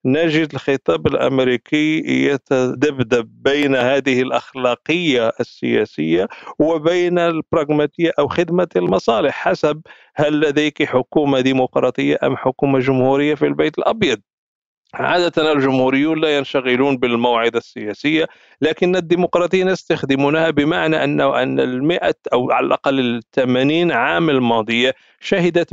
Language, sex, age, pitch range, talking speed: Arabic, male, 50-69, 125-160 Hz, 105 wpm